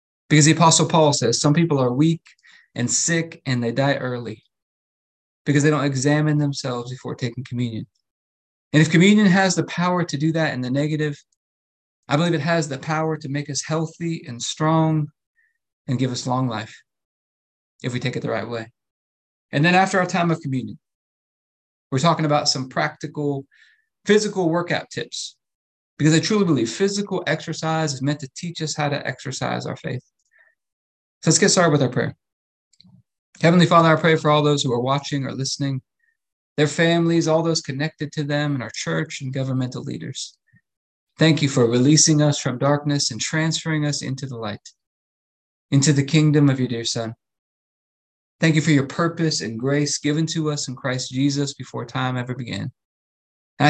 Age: 20-39